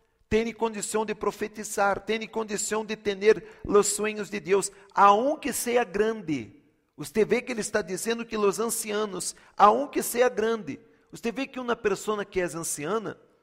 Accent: Brazilian